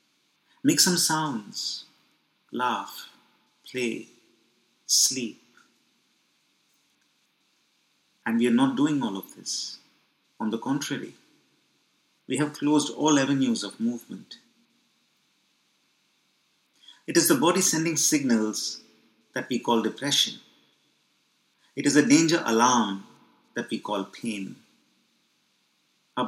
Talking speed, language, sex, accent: 100 wpm, English, male, Indian